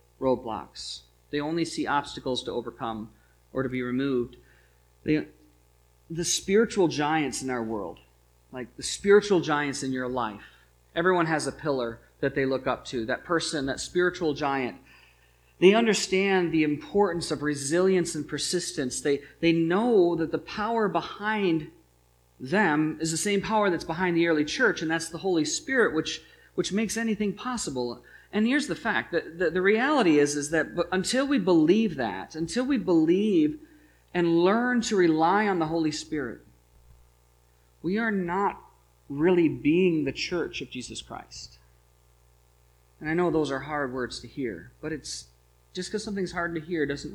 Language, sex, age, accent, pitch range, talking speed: English, male, 40-59, American, 110-185 Hz, 165 wpm